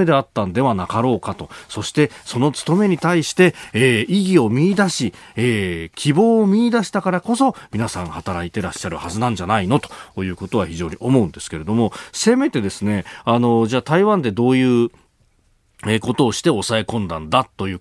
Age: 40-59